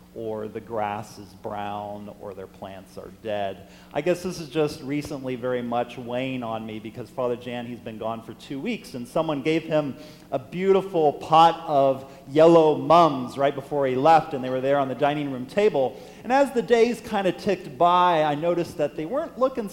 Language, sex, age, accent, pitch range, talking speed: English, male, 40-59, American, 135-195 Hz, 205 wpm